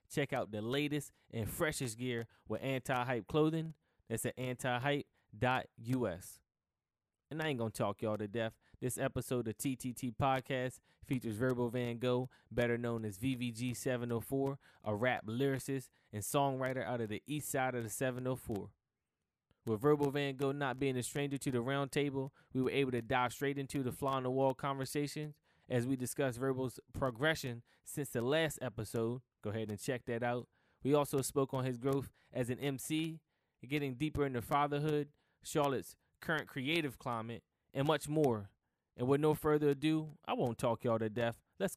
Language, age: English, 10-29